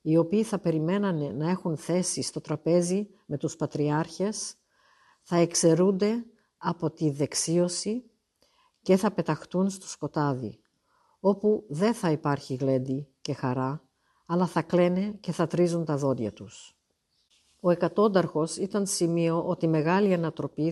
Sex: female